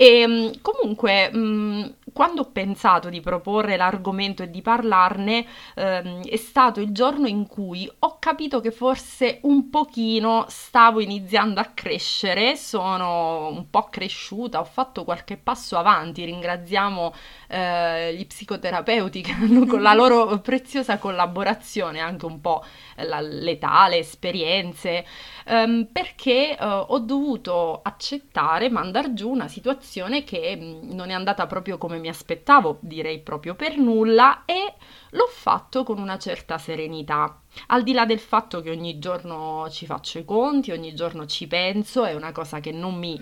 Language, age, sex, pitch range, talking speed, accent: Italian, 20-39, female, 170-235 Hz, 140 wpm, native